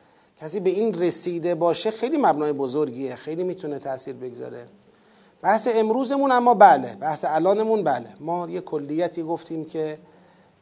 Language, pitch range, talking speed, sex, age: Persian, 165-250 Hz, 135 wpm, male, 40-59